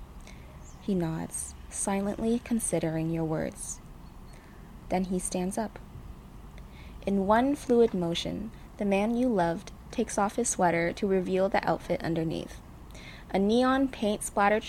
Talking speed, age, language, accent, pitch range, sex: 125 wpm, 20-39, English, American, 160-225 Hz, female